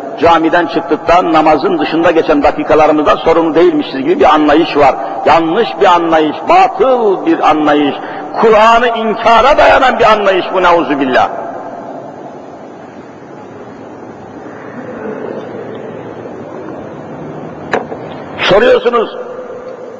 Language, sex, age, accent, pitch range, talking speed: Turkish, male, 50-69, native, 220-275 Hz, 80 wpm